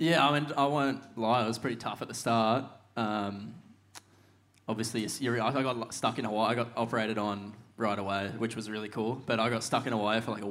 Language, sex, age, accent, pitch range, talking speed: English, male, 10-29, Australian, 105-125 Hz, 230 wpm